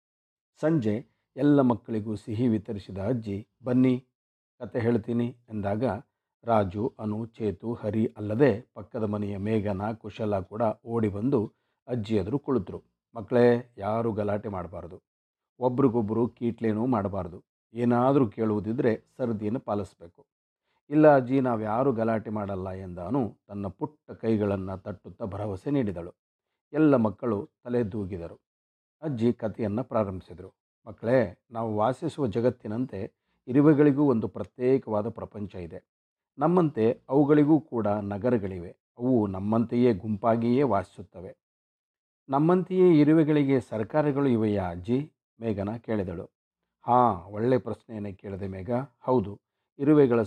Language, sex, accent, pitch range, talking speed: Kannada, male, native, 105-125 Hz, 100 wpm